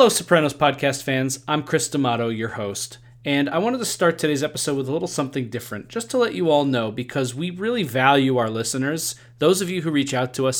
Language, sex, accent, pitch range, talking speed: English, male, American, 120-140 Hz, 230 wpm